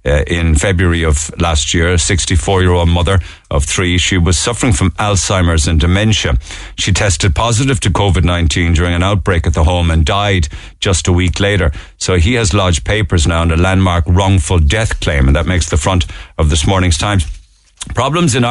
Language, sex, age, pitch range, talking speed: English, male, 50-69, 85-100 Hz, 190 wpm